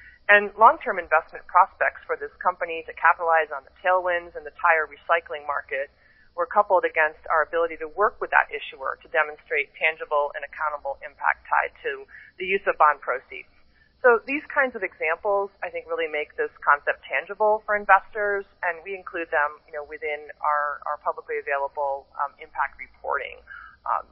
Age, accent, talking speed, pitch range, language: 30-49, American, 170 wpm, 155-225 Hz, English